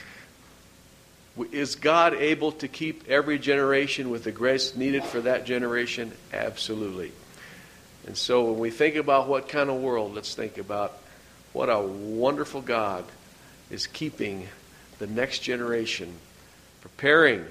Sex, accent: male, American